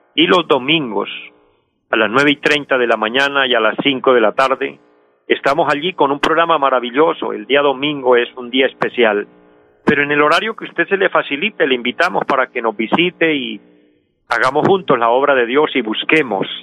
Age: 50-69